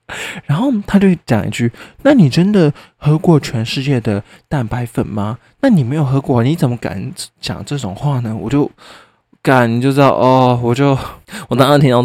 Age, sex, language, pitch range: 20-39, male, Chinese, 110-150 Hz